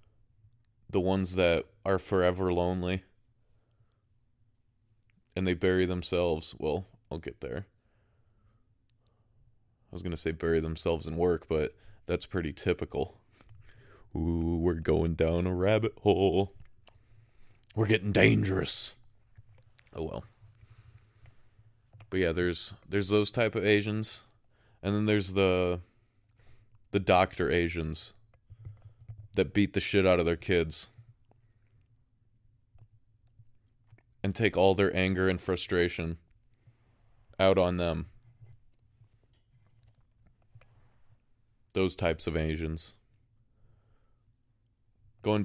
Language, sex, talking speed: English, male, 100 wpm